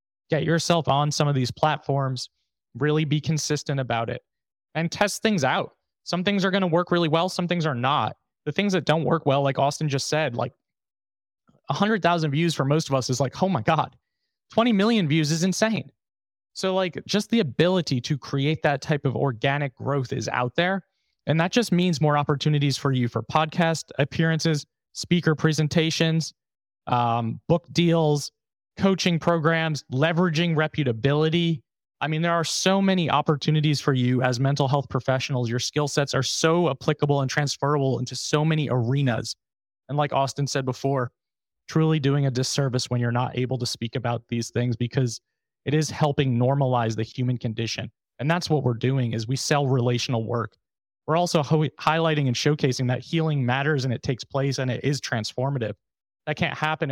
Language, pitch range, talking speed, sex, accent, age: English, 125-160 Hz, 180 wpm, male, American, 20-39